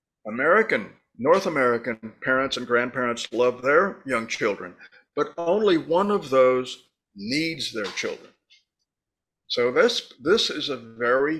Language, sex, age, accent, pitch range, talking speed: English, male, 50-69, American, 120-160 Hz, 125 wpm